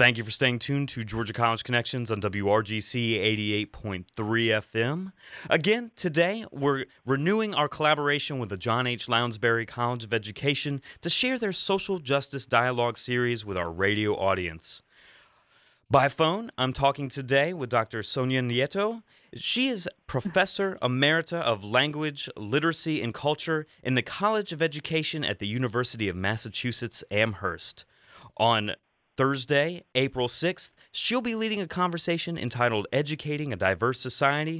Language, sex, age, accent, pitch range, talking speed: English, male, 30-49, American, 115-170 Hz, 140 wpm